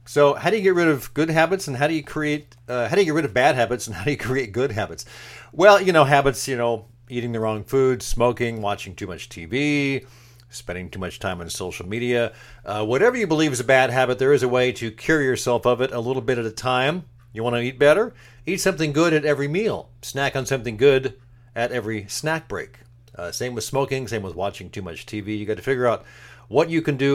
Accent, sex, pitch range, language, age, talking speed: American, male, 115-145 Hz, English, 50-69, 250 wpm